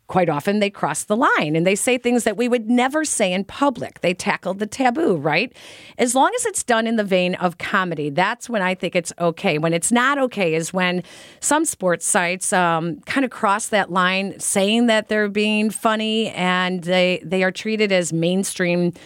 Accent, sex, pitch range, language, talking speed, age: American, female, 170-225 Hz, English, 205 wpm, 40-59